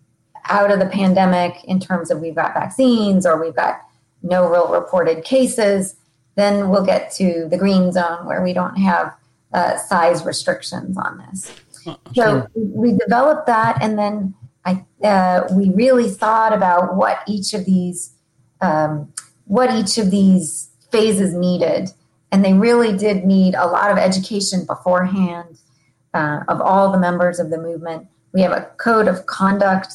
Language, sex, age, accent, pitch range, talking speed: English, female, 40-59, American, 180-205 Hz, 160 wpm